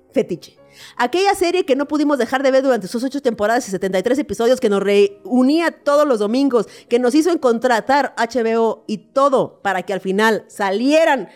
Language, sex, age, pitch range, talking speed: Spanish, female, 40-59, 190-270 Hz, 180 wpm